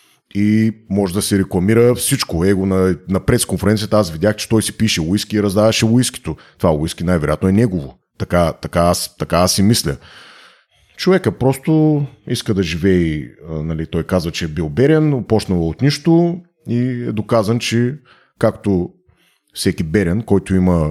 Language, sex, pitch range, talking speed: Bulgarian, male, 90-115 Hz, 155 wpm